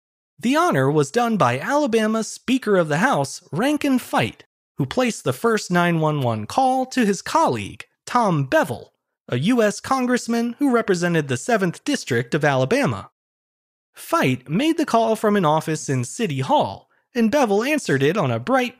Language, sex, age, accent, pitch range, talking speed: English, male, 30-49, American, 150-245 Hz, 160 wpm